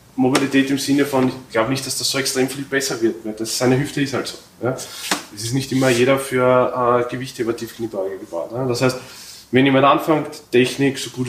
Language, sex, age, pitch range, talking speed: German, male, 20-39, 115-135 Hz, 215 wpm